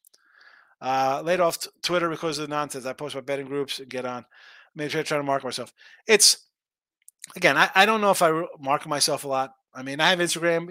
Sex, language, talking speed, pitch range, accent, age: male, English, 235 wpm, 135-175 Hz, American, 30-49